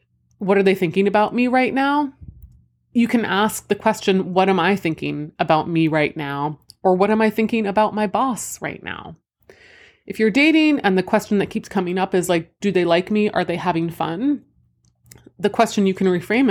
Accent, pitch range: American, 170-220 Hz